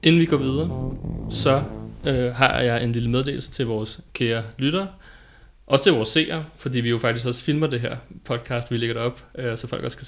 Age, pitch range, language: 30-49, 115-145 Hz, Danish